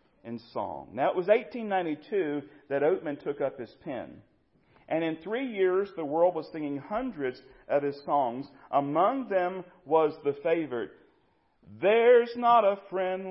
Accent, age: American, 40-59